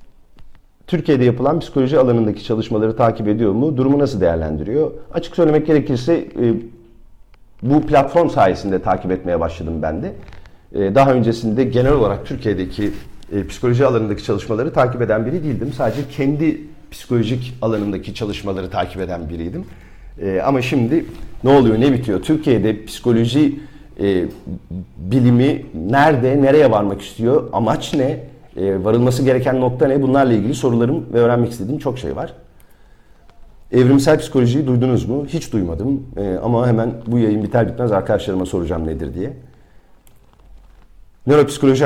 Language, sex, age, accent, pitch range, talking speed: Turkish, male, 40-59, native, 100-135 Hz, 125 wpm